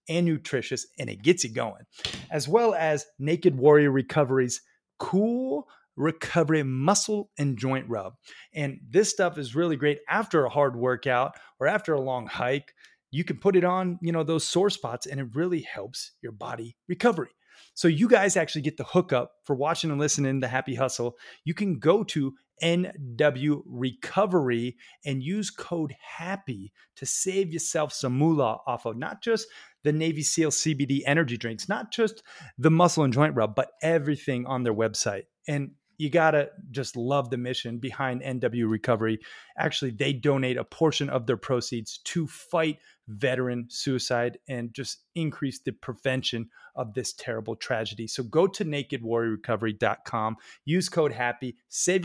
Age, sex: 30-49, male